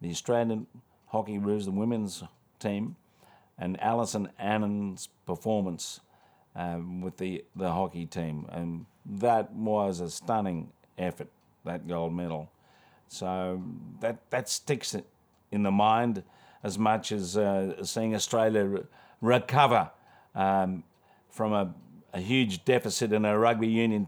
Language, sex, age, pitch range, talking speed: English, male, 50-69, 100-120 Hz, 125 wpm